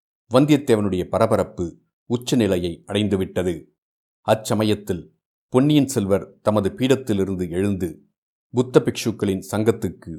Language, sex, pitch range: Tamil, male, 95-115 Hz